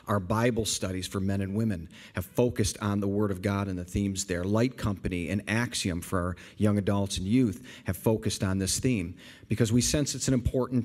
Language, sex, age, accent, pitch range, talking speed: English, male, 40-59, American, 100-125 Hz, 215 wpm